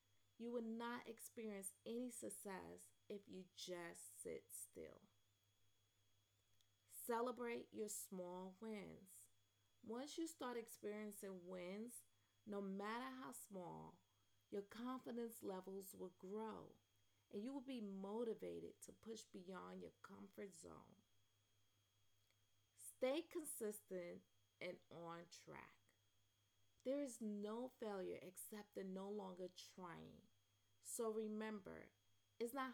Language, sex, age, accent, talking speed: English, female, 30-49, American, 105 wpm